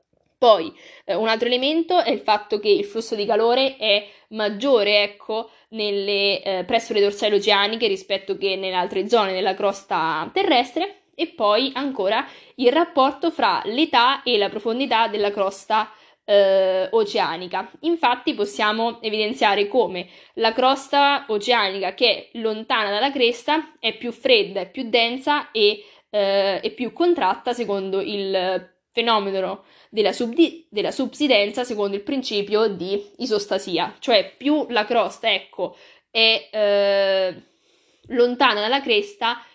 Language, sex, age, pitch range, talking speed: Italian, female, 20-39, 200-250 Hz, 135 wpm